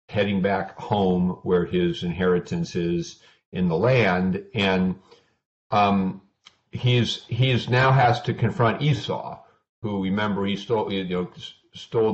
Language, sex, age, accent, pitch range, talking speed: English, male, 50-69, American, 95-115 Hz, 130 wpm